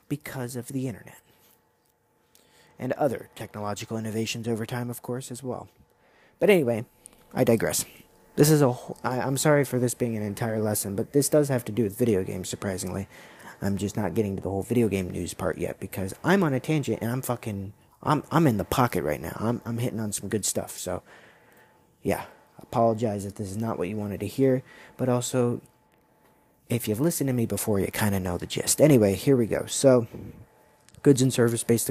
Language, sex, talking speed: English, male, 205 wpm